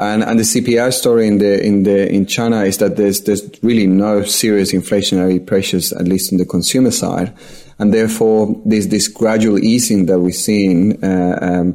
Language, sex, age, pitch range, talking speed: English, male, 30-49, 95-105 Hz, 190 wpm